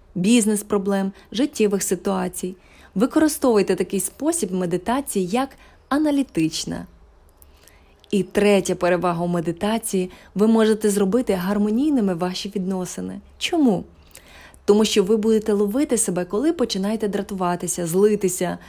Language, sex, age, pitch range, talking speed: Ukrainian, female, 20-39, 175-215 Hz, 105 wpm